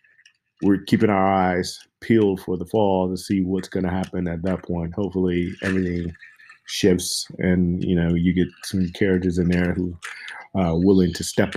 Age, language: 30-49, English